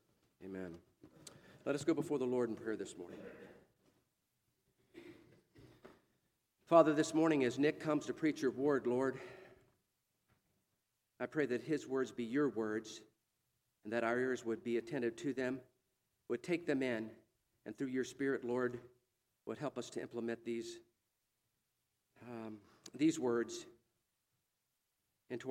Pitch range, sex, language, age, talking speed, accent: 115-135 Hz, male, English, 50-69, 135 wpm, American